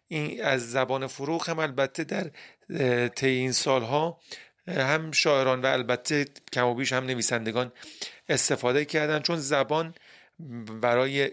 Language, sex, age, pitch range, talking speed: Persian, male, 40-59, 120-140 Hz, 120 wpm